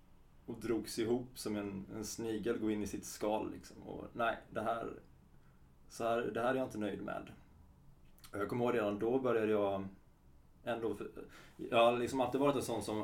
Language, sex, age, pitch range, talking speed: Swedish, male, 20-39, 95-110 Hz, 200 wpm